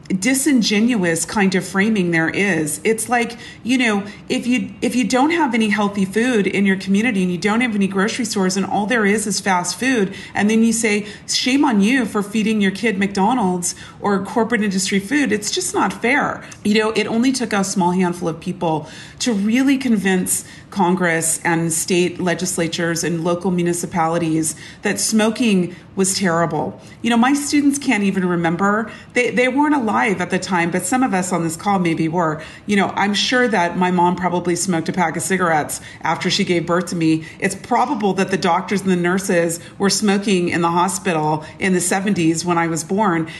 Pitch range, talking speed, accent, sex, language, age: 175-235 Hz, 195 wpm, American, female, English, 40-59